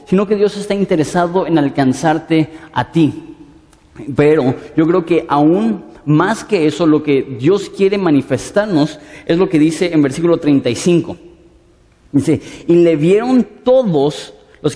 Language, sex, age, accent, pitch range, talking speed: Spanish, male, 40-59, Mexican, 150-190 Hz, 140 wpm